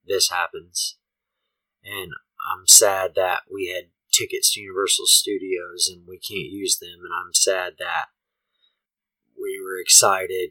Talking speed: 135 wpm